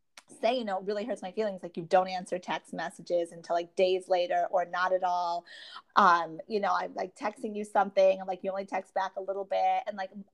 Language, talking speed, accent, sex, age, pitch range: English, 240 wpm, American, female, 30-49, 185-220 Hz